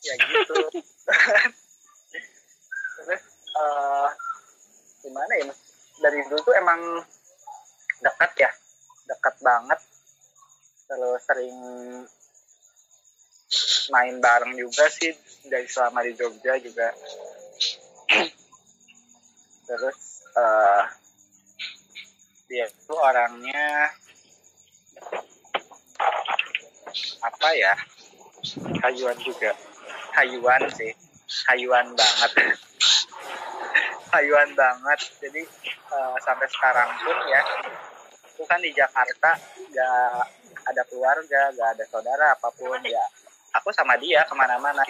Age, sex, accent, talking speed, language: 20-39, male, native, 80 wpm, Indonesian